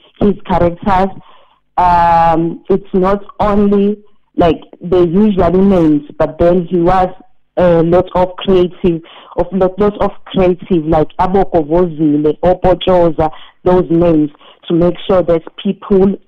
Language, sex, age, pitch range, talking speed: English, female, 50-69, 170-200 Hz, 125 wpm